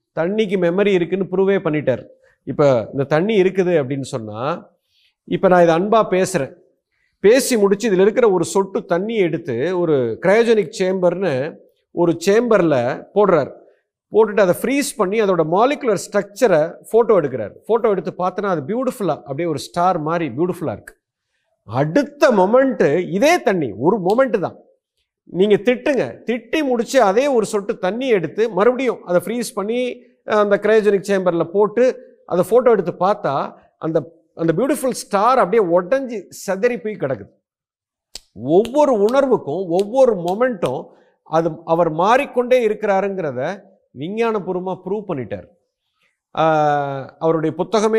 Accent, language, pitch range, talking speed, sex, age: native, Tamil, 170-235 Hz, 125 wpm, male, 50-69